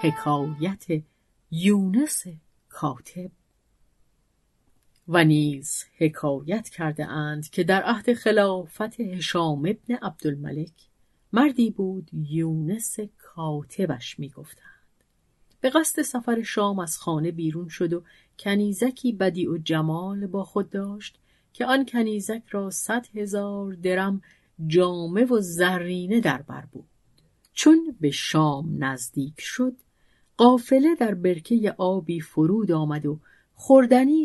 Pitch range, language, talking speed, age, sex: 155-215 Hz, Persian, 105 wpm, 40-59, female